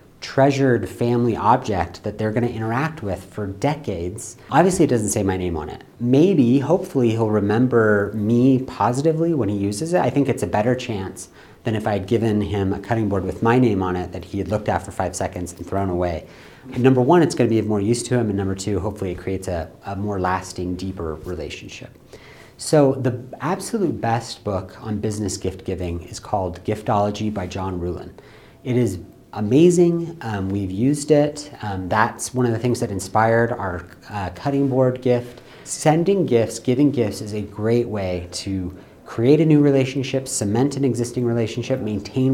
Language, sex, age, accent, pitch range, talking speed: English, male, 40-59, American, 100-130 Hz, 190 wpm